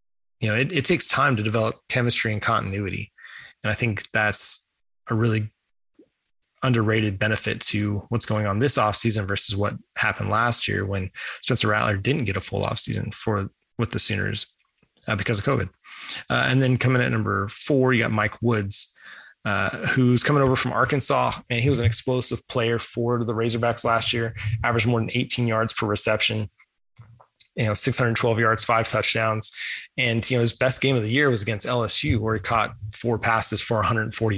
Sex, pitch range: male, 105-120 Hz